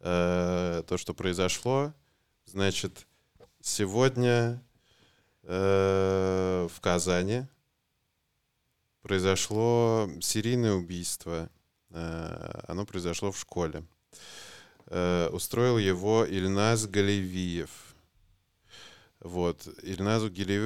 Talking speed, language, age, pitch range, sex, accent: 55 wpm, Russian, 20-39, 90-105 Hz, male, native